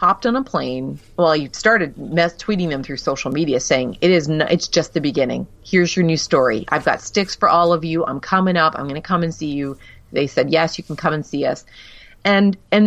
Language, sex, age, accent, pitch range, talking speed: English, female, 30-49, American, 150-200 Hz, 245 wpm